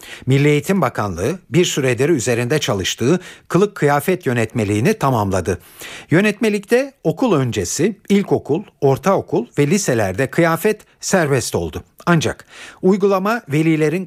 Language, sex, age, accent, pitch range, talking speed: Turkish, male, 50-69, native, 110-160 Hz, 100 wpm